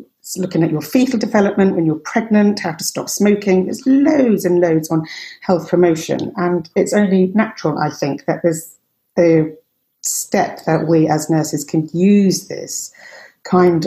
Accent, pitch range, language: British, 160-190 Hz, English